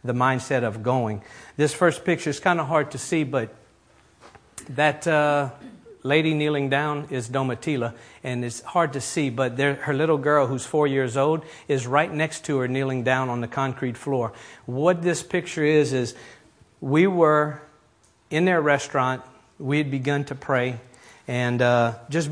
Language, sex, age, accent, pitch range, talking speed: English, male, 50-69, American, 125-150 Hz, 170 wpm